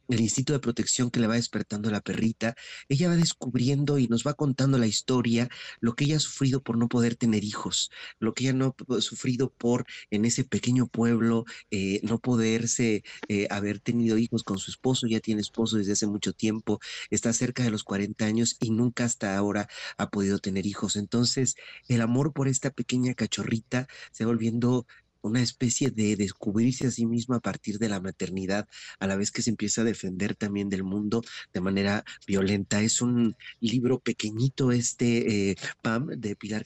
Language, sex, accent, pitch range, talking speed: Spanish, male, Mexican, 105-125 Hz, 190 wpm